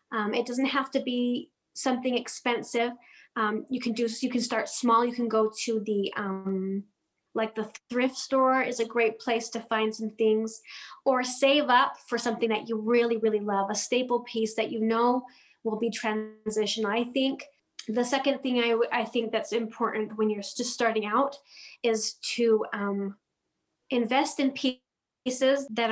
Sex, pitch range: female, 220-265 Hz